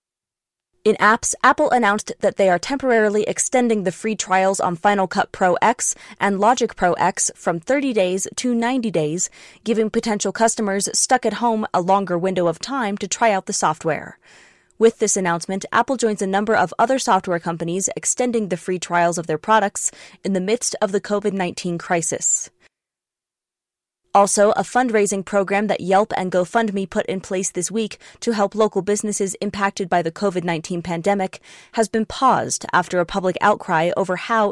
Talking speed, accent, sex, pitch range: 170 wpm, American, female, 180-220 Hz